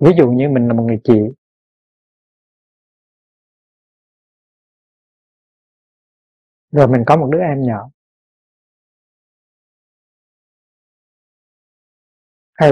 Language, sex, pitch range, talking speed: Vietnamese, male, 120-155 Hz, 75 wpm